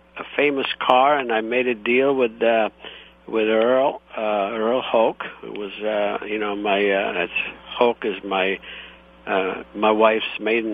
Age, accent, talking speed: 60-79, American, 170 wpm